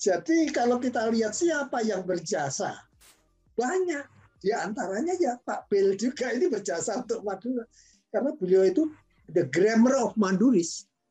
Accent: native